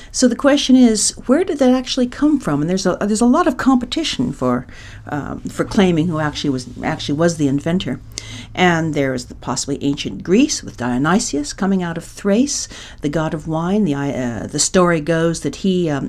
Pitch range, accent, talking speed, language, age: 145-205 Hz, American, 200 wpm, English, 50-69